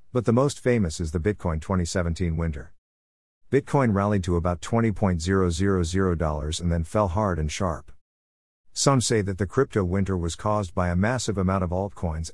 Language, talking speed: English, 165 wpm